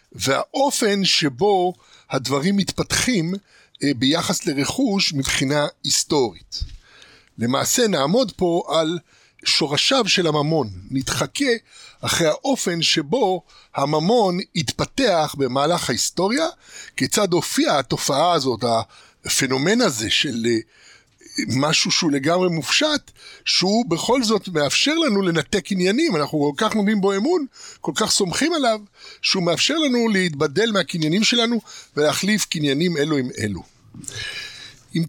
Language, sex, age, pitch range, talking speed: Hebrew, male, 60-79, 145-210 Hz, 110 wpm